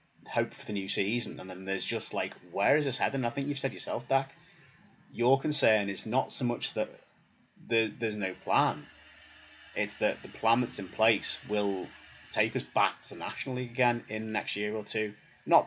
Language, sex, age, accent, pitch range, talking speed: English, male, 30-49, British, 100-125 Hz, 195 wpm